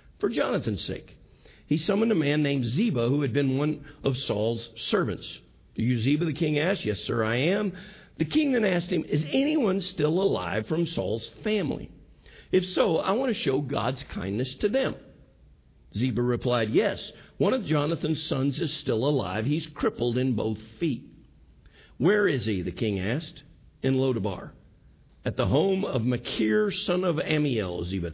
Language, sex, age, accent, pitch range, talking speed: English, male, 50-69, American, 110-155 Hz, 170 wpm